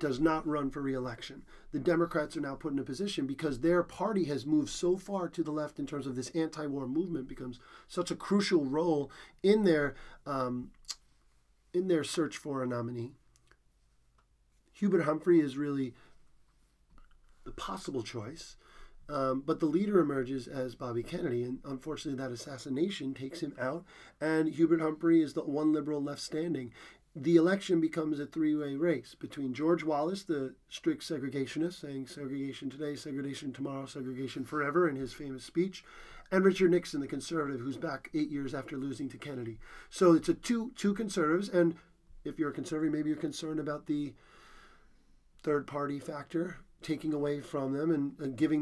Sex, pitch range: male, 135-170 Hz